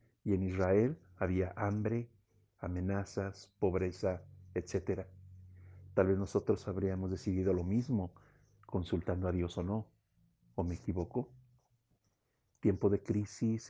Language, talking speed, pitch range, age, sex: Spanish, 115 wpm, 95-115 Hz, 50-69, male